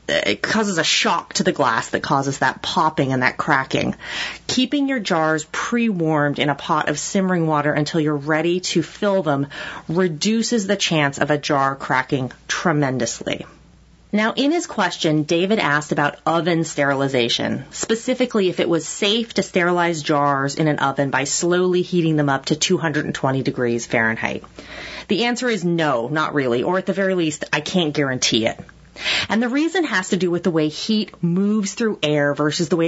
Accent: American